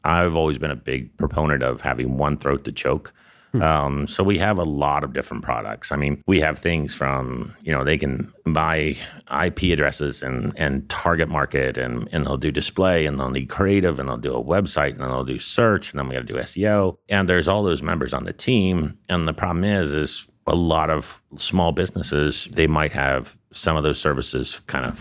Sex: male